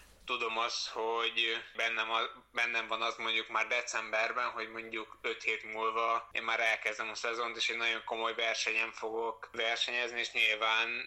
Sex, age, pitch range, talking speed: male, 20-39, 110-115 Hz, 165 wpm